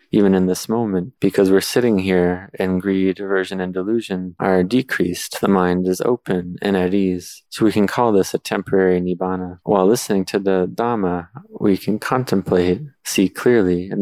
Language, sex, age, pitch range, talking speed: English, male, 20-39, 90-100 Hz, 175 wpm